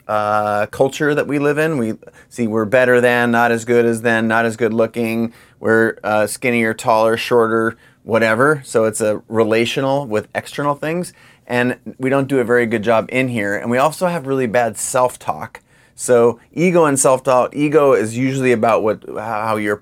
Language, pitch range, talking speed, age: English, 110-135 Hz, 185 wpm, 30-49